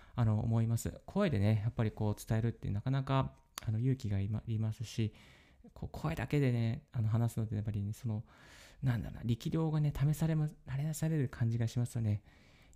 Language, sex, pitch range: Japanese, male, 110-145 Hz